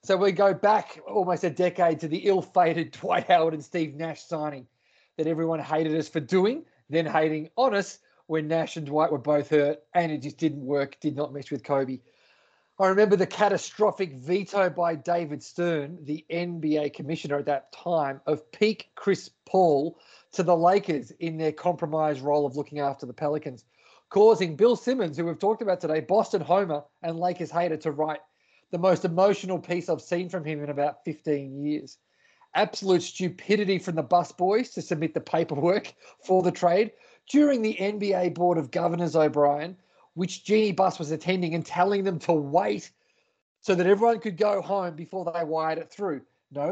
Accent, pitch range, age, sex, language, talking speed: Australian, 155-190 Hz, 30-49, male, English, 180 wpm